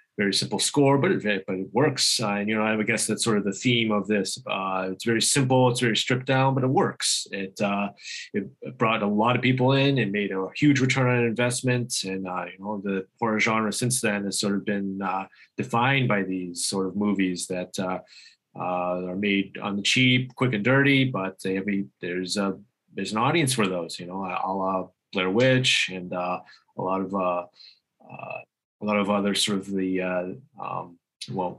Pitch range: 95-110 Hz